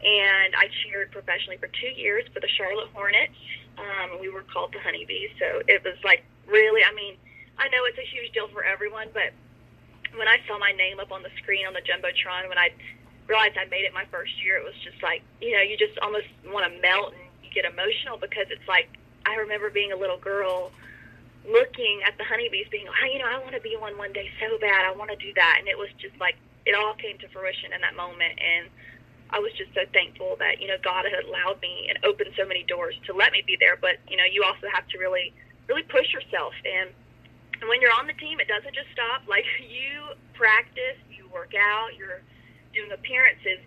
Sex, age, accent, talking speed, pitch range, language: female, 20-39, American, 230 wpm, 190-310 Hz, English